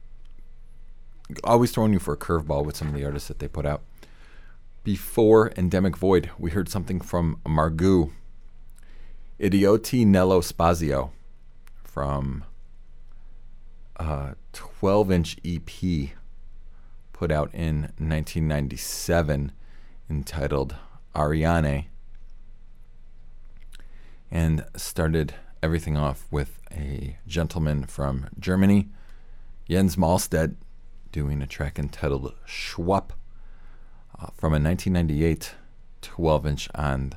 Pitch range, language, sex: 65-85 Hz, English, male